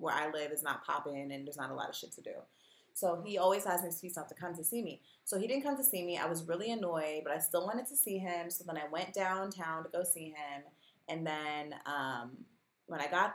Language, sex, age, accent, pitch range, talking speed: English, female, 20-39, American, 165-215 Hz, 265 wpm